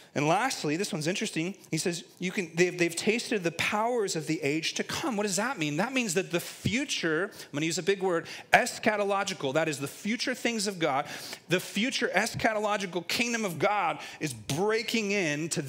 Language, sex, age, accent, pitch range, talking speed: English, male, 30-49, American, 170-225 Hz, 195 wpm